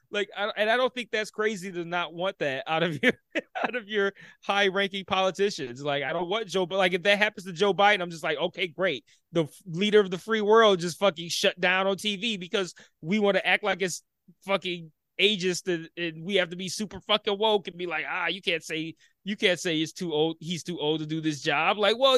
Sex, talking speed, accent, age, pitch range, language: male, 250 wpm, American, 20-39, 180-240 Hz, English